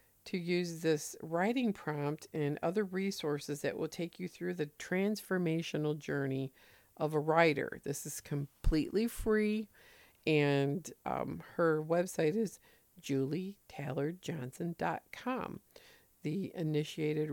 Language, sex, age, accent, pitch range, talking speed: English, female, 50-69, American, 150-205 Hz, 105 wpm